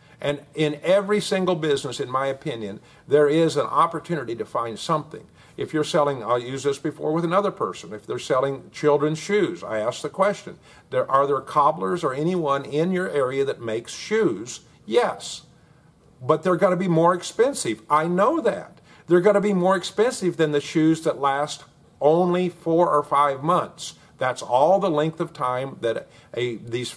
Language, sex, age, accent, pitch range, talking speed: English, male, 50-69, American, 140-175 Hz, 180 wpm